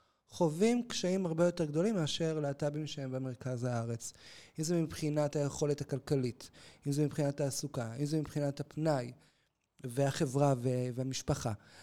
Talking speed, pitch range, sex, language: 125 wpm, 130-175 Hz, male, Hebrew